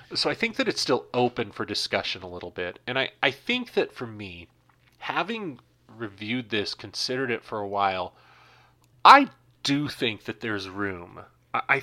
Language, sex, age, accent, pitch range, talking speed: English, male, 30-49, American, 100-135 Hz, 170 wpm